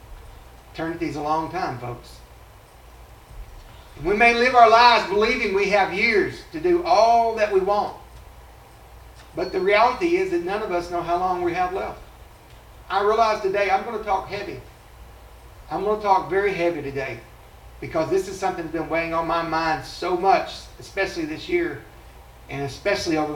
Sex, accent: male, American